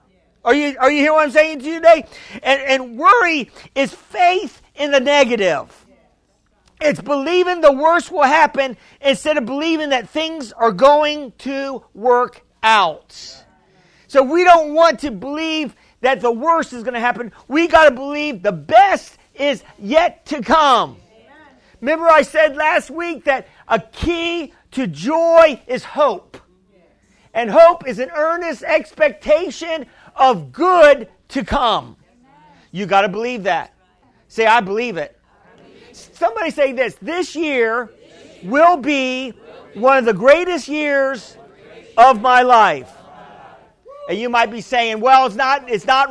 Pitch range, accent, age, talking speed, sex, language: 250-315 Hz, American, 50-69, 150 wpm, male, English